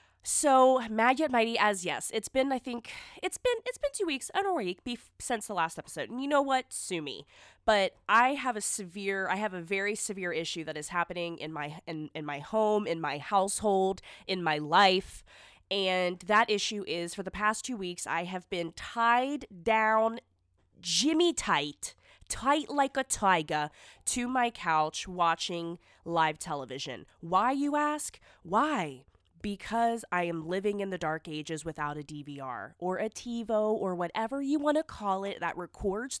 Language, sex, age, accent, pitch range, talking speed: English, female, 20-39, American, 180-255 Hz, 175 wpm